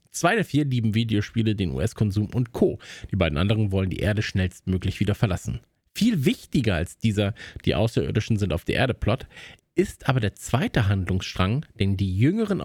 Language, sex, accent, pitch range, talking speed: German, male, German, 100-135 Hz, 175 wpm